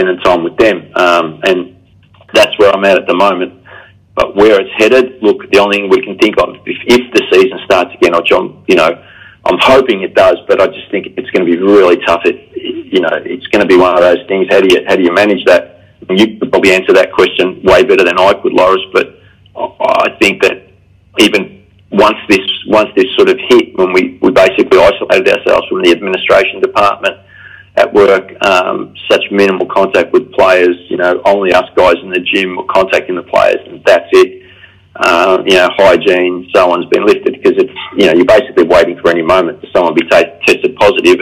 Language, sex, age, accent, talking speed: English, male, 40-59, Australian, 215 wpm